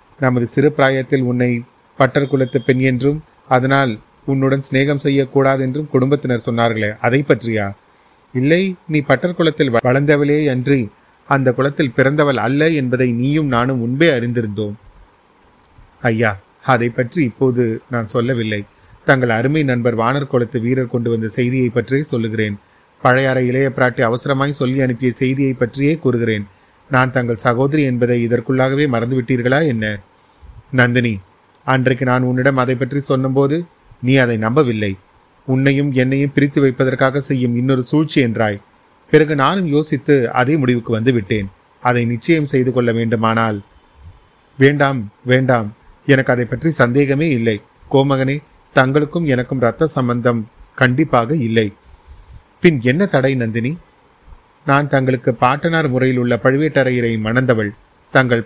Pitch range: 120-140 Hz